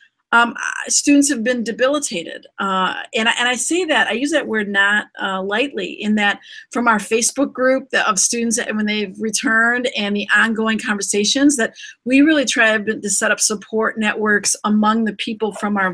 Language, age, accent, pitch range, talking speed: English, 40-59, American, 220-275 Hz, 175 wpm